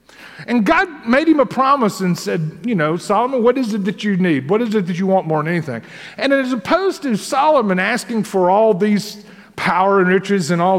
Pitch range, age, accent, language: 200-275 Hz, 50-69, American, English